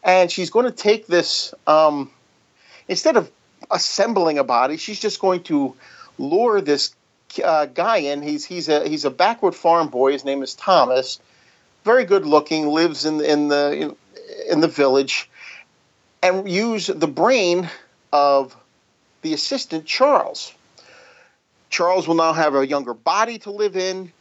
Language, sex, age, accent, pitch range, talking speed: English, male, 40-59, American, 140-180 Hz, 160 wpm